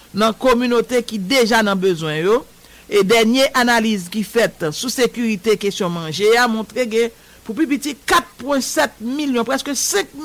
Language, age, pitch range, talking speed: English, 60-79, 210-265 Hz, 145 wpm